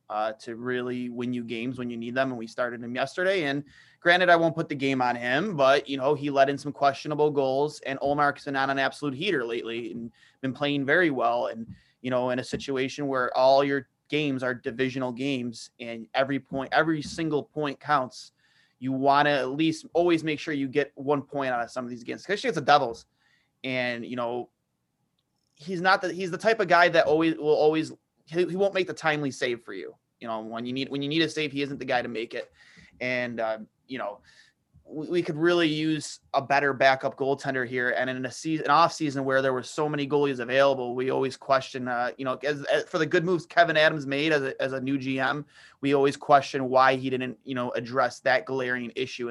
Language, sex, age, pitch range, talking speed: English, male, 20-39, 125-145 Hz, 225 wpm